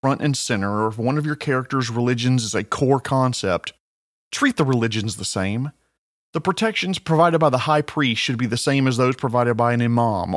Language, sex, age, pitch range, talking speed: English, male, 40-59, 115-155 Hz, 210 wpm